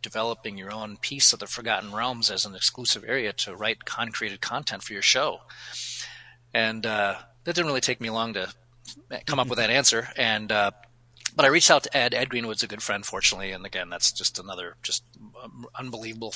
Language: English